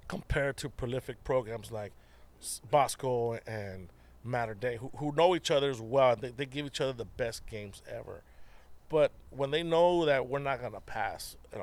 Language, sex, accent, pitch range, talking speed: English, male, American, 105-135 Hz, 185 wpm